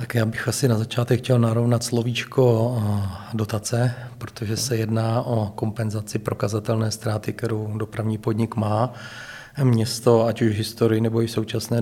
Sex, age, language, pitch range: male, 40-59, Czech, 110-120 Hz